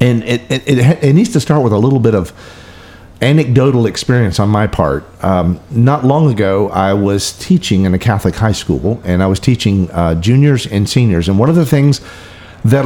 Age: 50-69